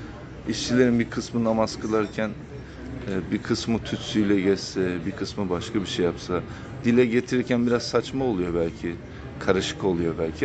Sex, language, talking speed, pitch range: male, Turkish, 140 wpm, 95-120 Hz